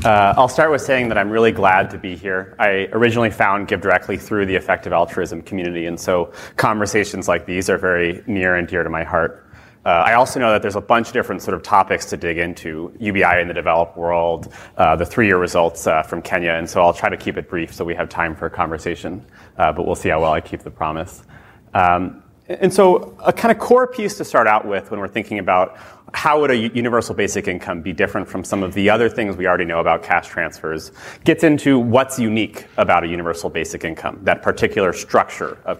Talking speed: 230 wpm